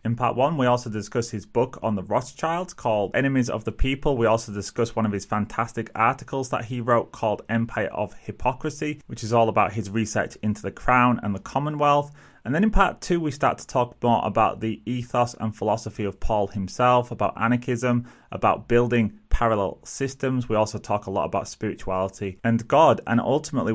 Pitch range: 105-125 Hz